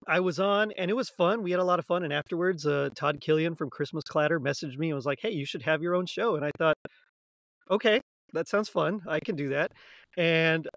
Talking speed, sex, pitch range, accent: 250 wpm, male, 155-190 Hz, American